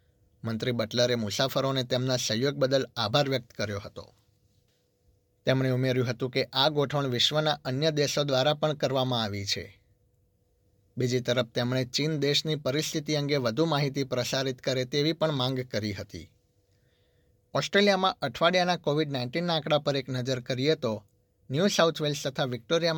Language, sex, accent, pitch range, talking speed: Gujarati, male, native, 115-145 Hz, 115 wpm